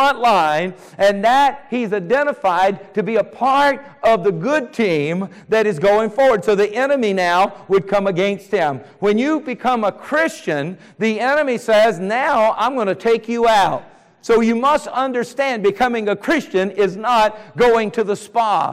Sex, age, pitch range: male, 50-69, 210-280 Hz